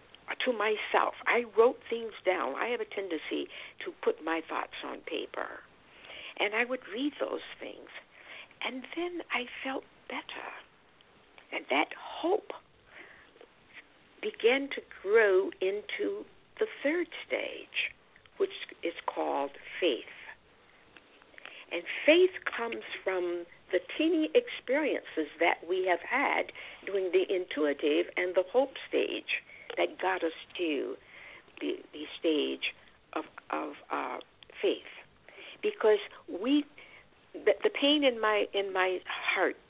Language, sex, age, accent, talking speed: English, female, 60-79, American, 120 wpm